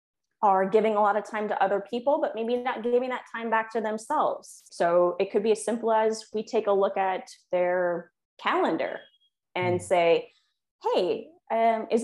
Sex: female